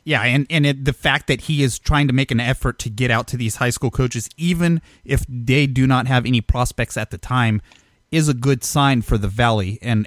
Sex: male